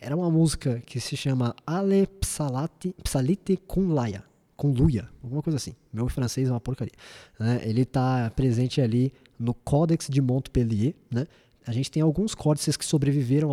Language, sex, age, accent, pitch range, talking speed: Portuguese, male, 20-39, Brazilian, 120-150 Hz, 155 wpm